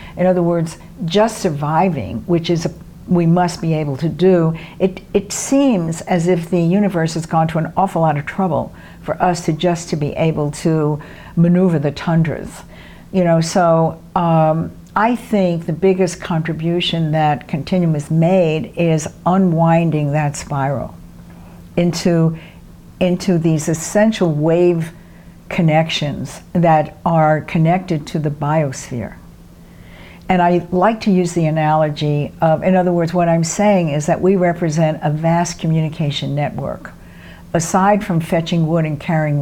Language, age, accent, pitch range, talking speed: English, 60-79, American, 155-175 Hz, 150 wpm